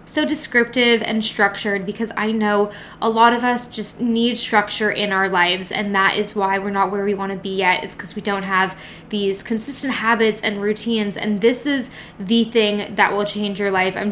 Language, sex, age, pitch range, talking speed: English, female, 10-29, 200-230 Hz, 210 wpm